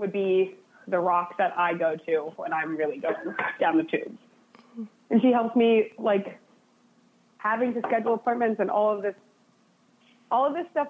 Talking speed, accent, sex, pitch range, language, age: 175 wpm, American, female, 195-235 Hz, English, 20-39